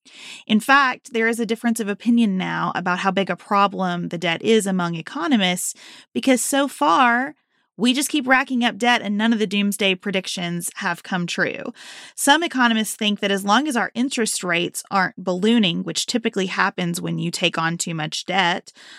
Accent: American